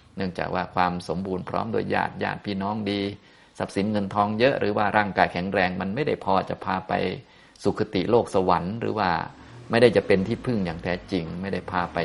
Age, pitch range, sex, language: 30-49, 90-105 Hz, male, Thai